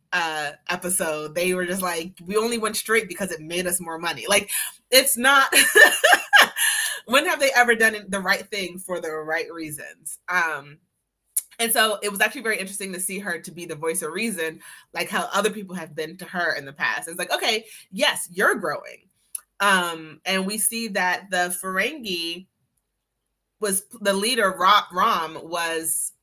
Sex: female